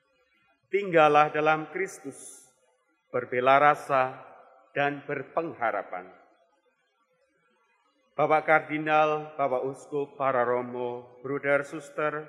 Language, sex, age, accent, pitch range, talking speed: Indonesian, male, 40-59, native, 135-175 Hz, 75 wpm